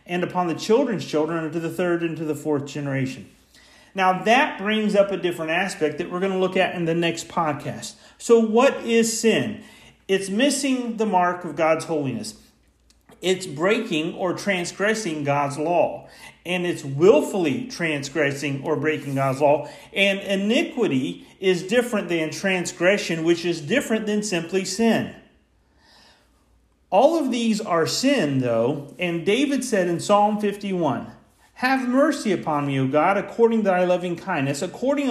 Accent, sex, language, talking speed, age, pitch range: American, male, English, 155 wpm, 40-59, 155-220 Hz